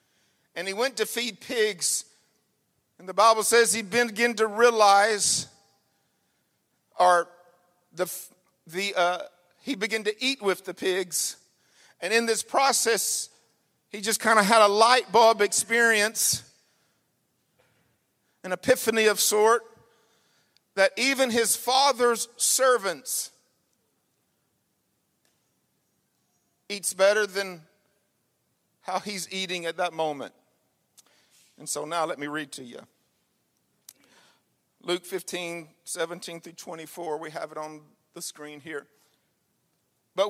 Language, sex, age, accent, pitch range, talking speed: English, male, 50-69, American, 180-230 Hz, 115 wpm